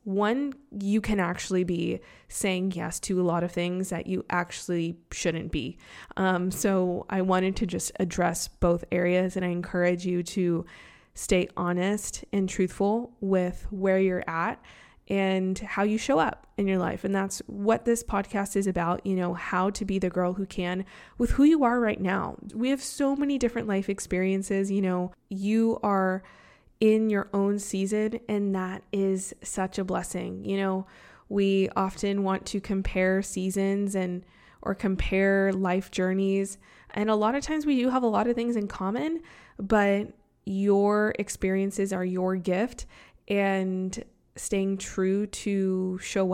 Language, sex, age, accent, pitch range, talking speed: English, female, 20-39, American, 185-210 Hz, 165 wpm